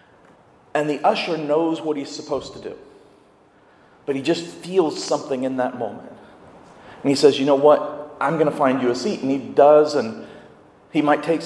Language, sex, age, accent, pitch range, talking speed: English, male, 40-59, American, 145-200 Hz, 195 wpm